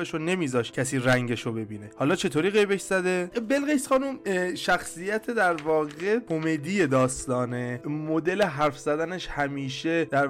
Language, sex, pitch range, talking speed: Persian, male, 130-170 Hz, 130 wpm